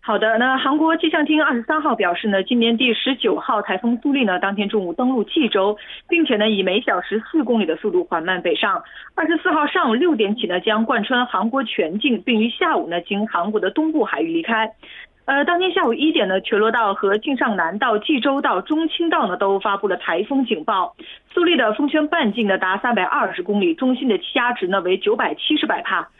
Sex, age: female, 30-49